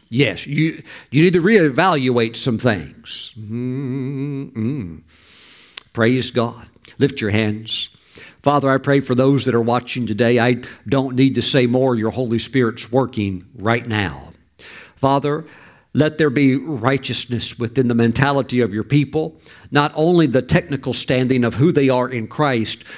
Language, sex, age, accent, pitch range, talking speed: English, male, 50-69, American, 115-160 Hz, 150 wpm